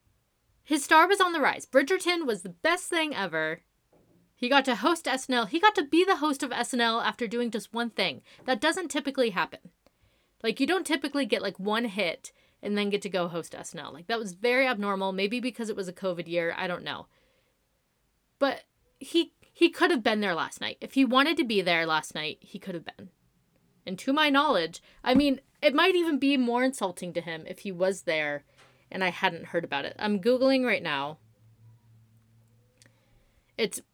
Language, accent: English, American